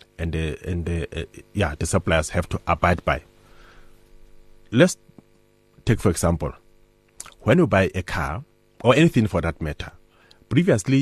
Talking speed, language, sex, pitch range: 145 wpm, English, male, 90-115 Hz